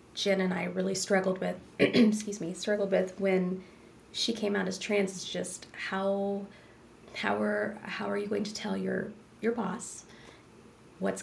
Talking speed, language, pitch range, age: 165 wpm, English, 165-210 Hz, 20-39